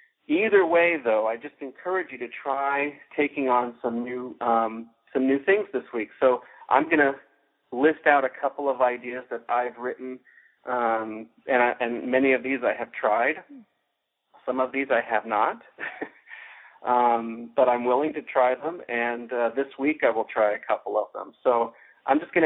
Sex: male